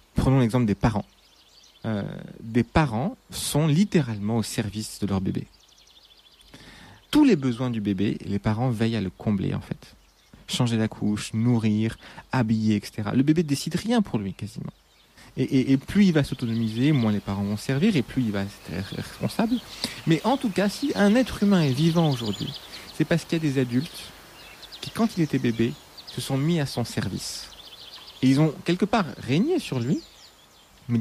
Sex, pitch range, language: male, 115-160 Hz, French